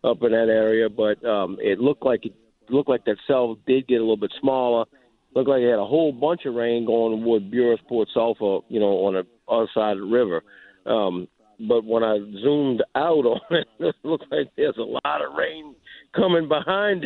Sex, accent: male, American